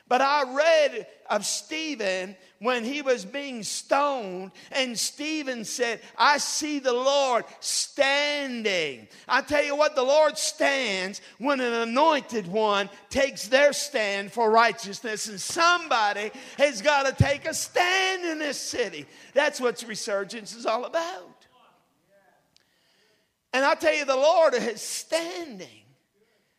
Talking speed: 135 wpm